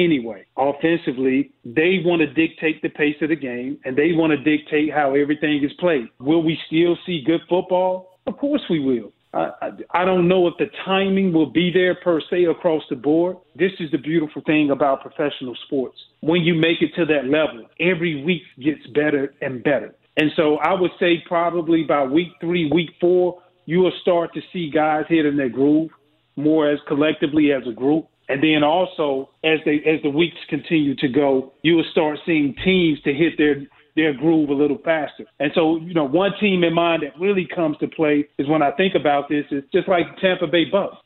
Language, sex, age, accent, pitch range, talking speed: English, male, 40-59, American, 150-170 Hz, 205 wpm